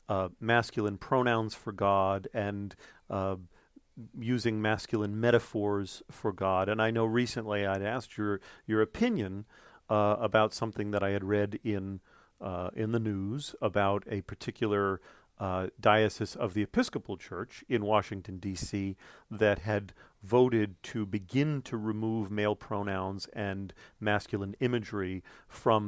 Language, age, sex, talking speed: English, 40-59, male, 135 wpm